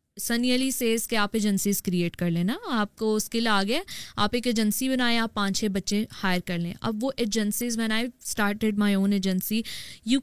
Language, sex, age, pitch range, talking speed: Urdu, female, 20-39, 195-230 Hz, 190 wpm